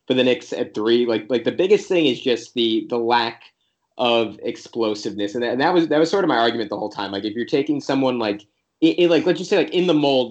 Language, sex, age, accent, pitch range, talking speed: English, male, 20-39, American, 110-125 Hz, 255 wpm